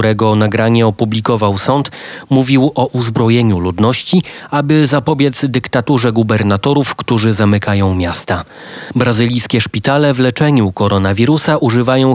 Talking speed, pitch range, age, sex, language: 105 wpm, 110-135 Hz, 30-49, male, Polish